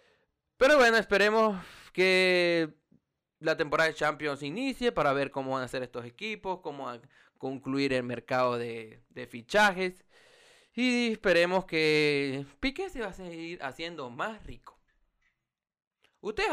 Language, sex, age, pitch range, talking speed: Spanish, male, 20-39, 140-200 Hz, 135 wpm